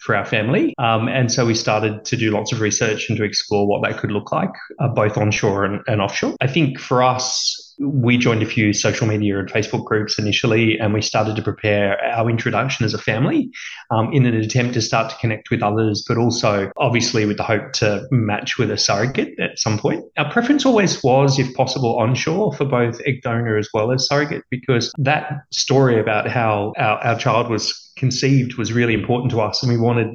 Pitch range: 110-130 Hz